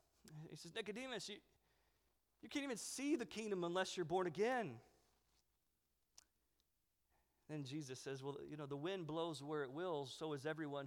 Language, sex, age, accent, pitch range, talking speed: English, male, 40-59, American, 145-210 Hz, 160 wpm